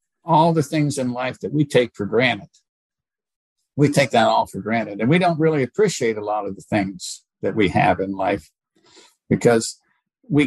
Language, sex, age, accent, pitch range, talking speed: English, male, 60-79, American, 120-155 Hz, 190 wpm